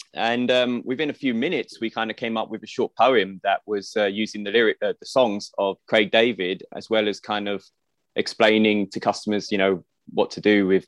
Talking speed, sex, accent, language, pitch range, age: 225 wpm, male, British, English, 100-115 Hz, 20-39